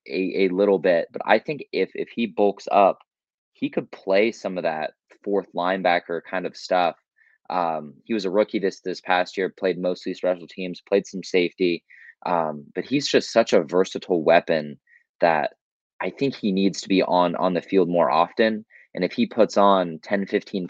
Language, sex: English, male